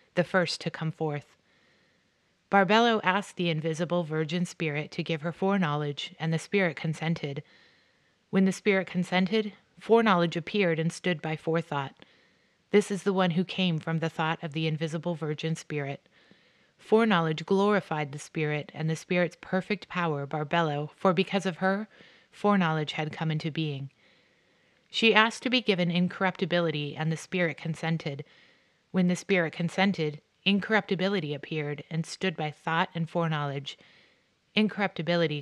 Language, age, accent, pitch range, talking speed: English, 30-49, American, 155-190 Hz, 145 wpm